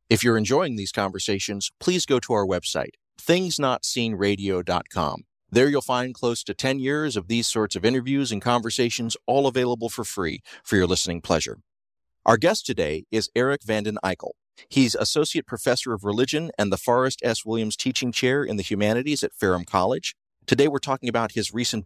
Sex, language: male, English